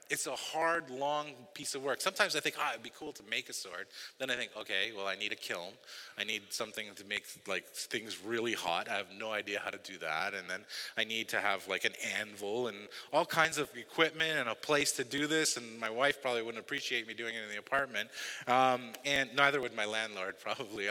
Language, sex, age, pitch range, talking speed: English, male, 30-49, 110-145 Hz, 240 wpm